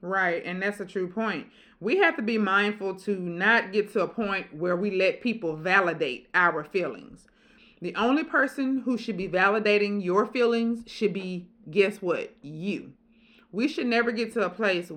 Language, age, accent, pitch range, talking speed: English, 30-49, American, 185-235 Hz, 180 wpm